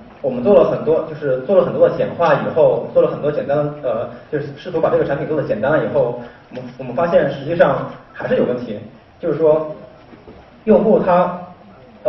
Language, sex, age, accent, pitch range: Chinese, male, 20-39, native, 145-205 Hz